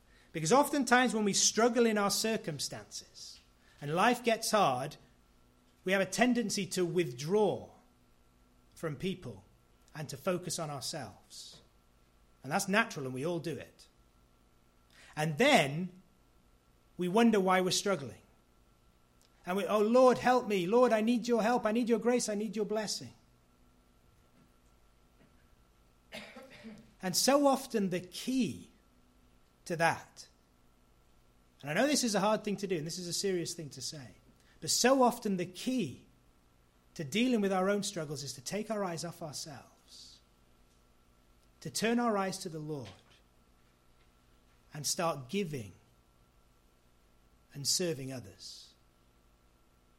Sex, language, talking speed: male, English, 140 wpm